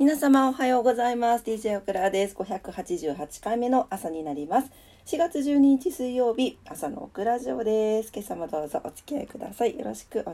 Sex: female